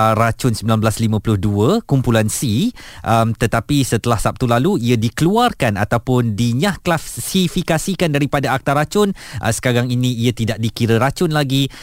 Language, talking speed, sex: Malay, 125 wpm, male